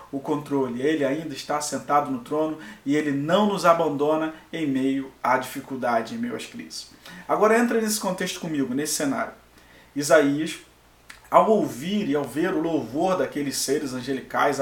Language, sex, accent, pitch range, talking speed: Portuguese, male, Brazilian, 140-225 Hz, 160 wpm